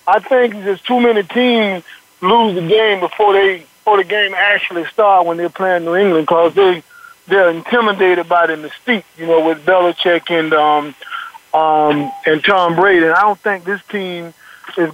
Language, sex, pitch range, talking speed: English, male, 170-195 Hz, 180 wpm